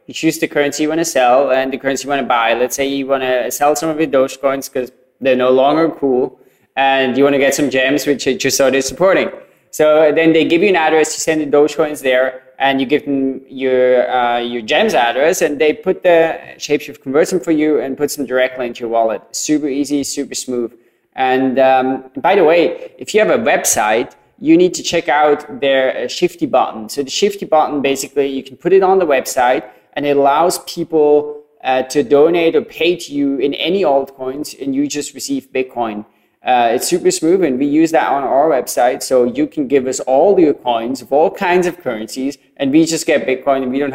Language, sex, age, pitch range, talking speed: English, male, 20-39, 130-155 Hz, 225 wpm